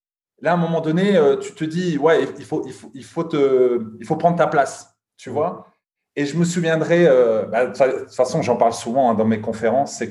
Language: French